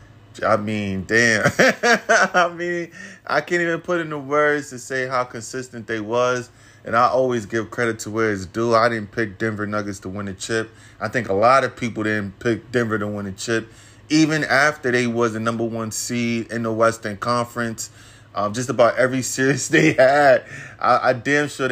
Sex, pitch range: male, 110-130 Hz